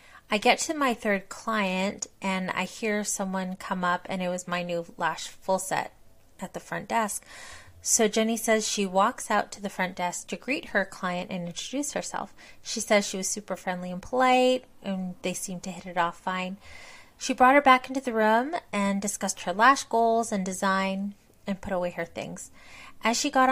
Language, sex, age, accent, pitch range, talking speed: English, female, 30-49, American, 175-220 Hz, 200 wpm